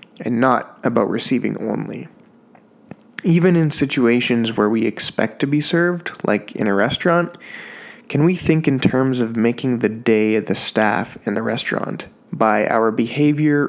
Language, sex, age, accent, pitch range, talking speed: English, male, 20-39, American, 115-150 Hz, 160 wpm